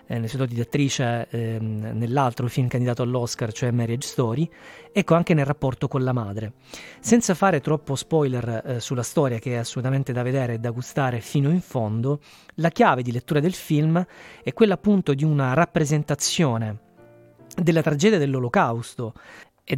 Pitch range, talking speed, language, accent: 120-165 Hz, 165 wpm, Italian, native